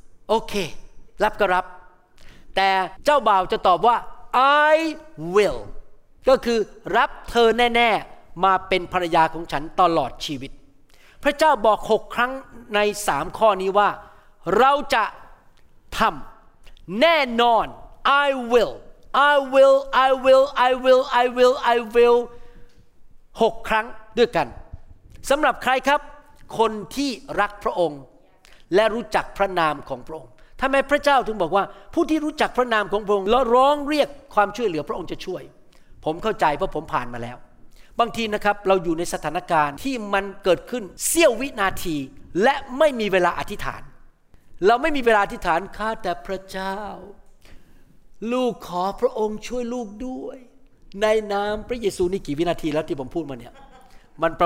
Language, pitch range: Thai, 175-255 Hz